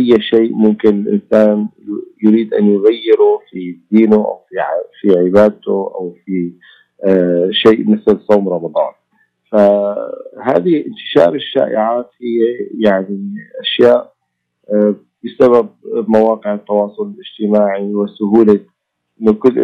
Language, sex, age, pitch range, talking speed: Arabic, male, 40-59, 100-115 Hz, 90 wpm